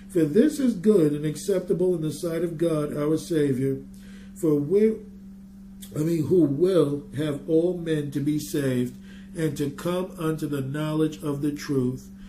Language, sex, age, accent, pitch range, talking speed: English, male, 50-69, American, 150-195 Hz, 165 wpm